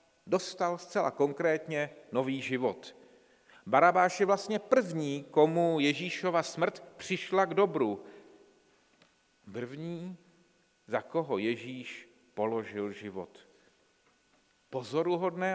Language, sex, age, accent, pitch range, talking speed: Czech, male, 40-59, native, 120-165 Hz, 85 wpm